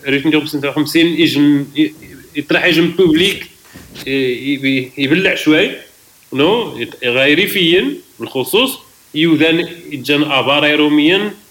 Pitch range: 125-165 Hz